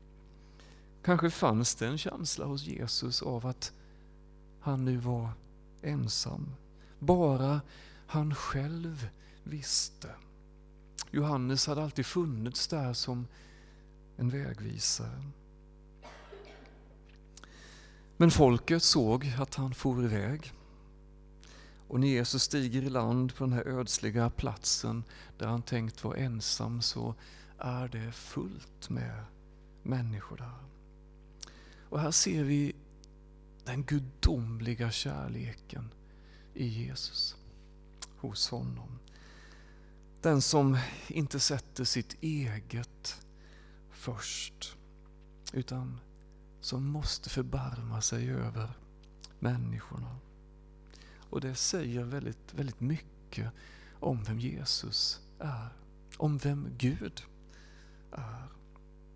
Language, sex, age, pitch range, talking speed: Swedish, male, 40-59, 120-145 Hz, 95 wpm